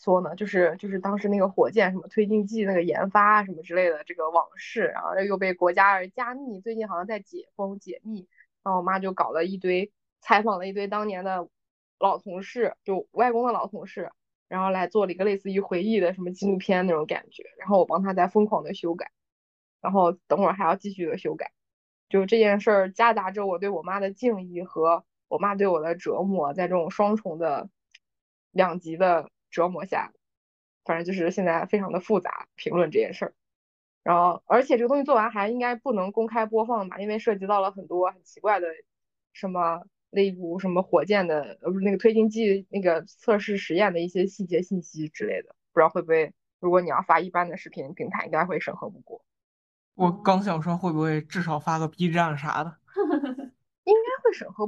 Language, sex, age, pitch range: Chinese, female, 20-39, 175-215 Hz